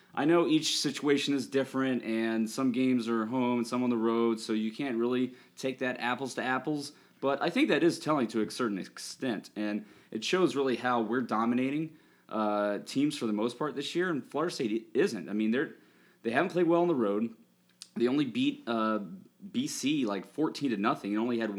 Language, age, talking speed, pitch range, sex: English, 20-39, 210 wpm, 110-145 Hz, male